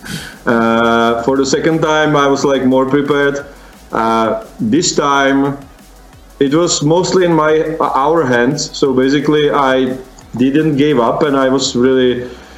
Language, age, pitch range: Russian, 40-59, 125-145 Hz